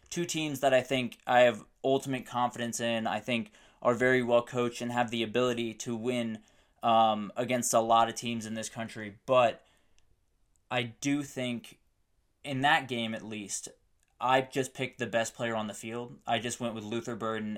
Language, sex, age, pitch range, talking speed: English, male, 20-39, 110-125 Hz, 190 wpm